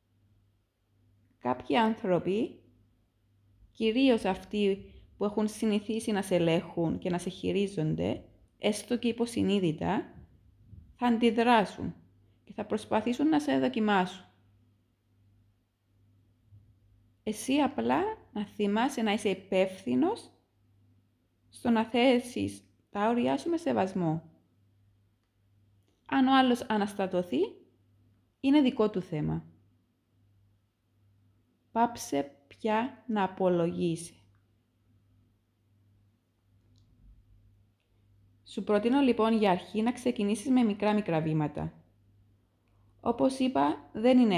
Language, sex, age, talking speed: Greek, female, 30-49, 90 wpm